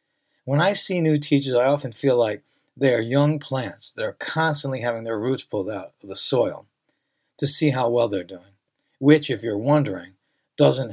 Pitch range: 125-155 Hz